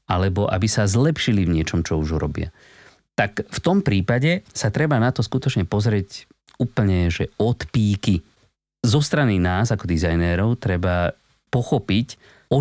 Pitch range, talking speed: 90-125 Hz, 150 wpm